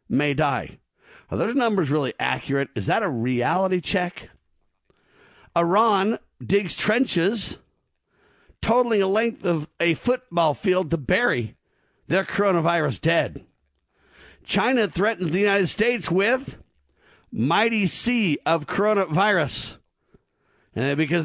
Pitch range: 155-205 Hz